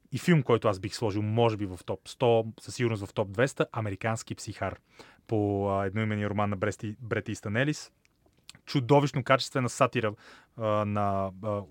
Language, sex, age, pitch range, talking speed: Bulgarian, male, 30-49, 100-120 Hz, 150 wpm